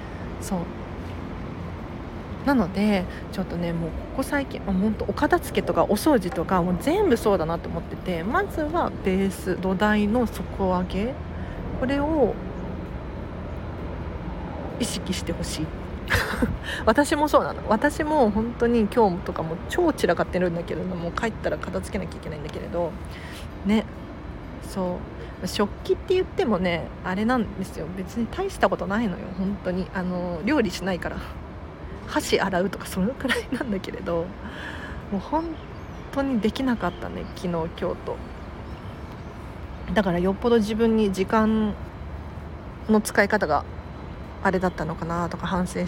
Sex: female